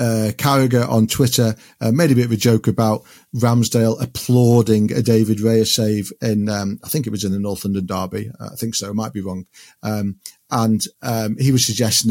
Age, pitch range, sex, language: 40-59, 105-120 Hz, male, English